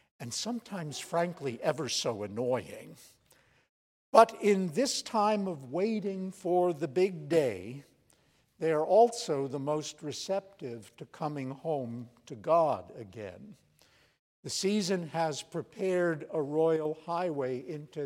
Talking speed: 120 wpm